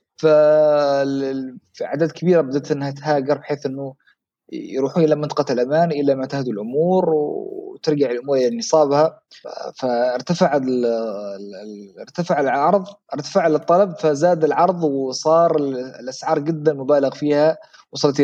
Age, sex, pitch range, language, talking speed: 30-49, male, 135-165 Hz, Arabic, 100 wpm